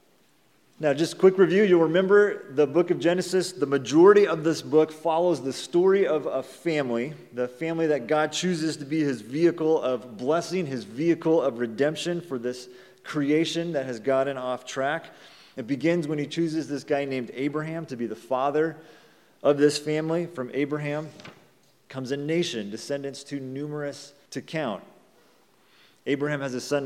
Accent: American